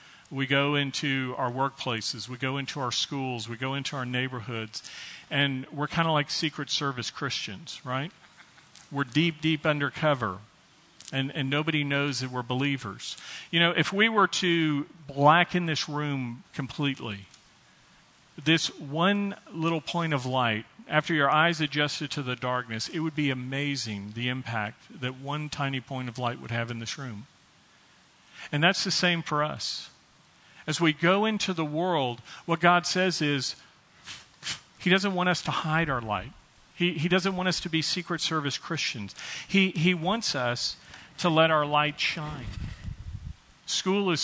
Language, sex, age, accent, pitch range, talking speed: English, male, 40-59, American, 125-165 Hz, 165 wpm